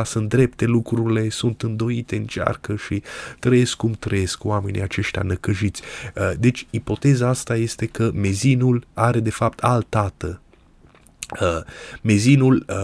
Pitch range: 100-115 Hz